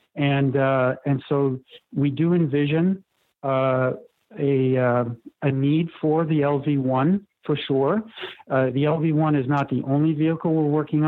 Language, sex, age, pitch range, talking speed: English, male, 40-59, 135-155 Hz, 155 wpm